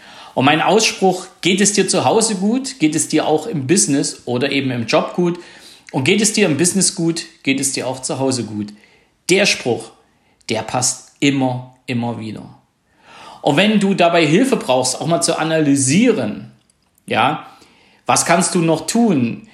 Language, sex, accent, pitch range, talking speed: German, male, German, 130-170 Hz, 175 wpm